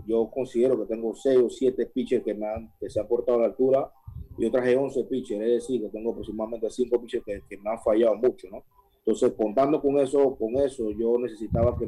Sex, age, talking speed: male, 30-49, 215 wpm